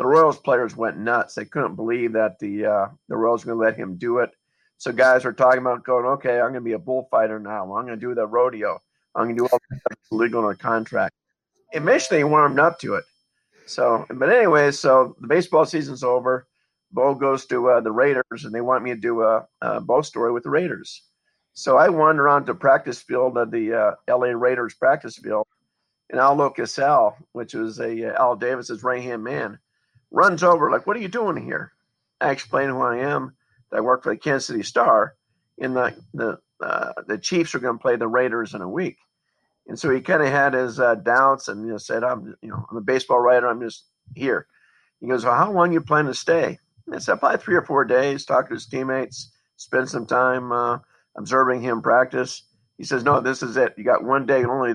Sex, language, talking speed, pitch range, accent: male, English, 230 wpm, 115-130 Hz, American